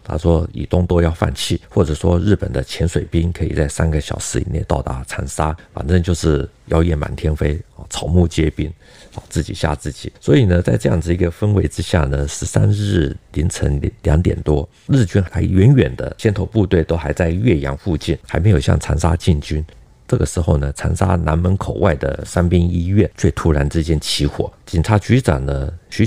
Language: Chinese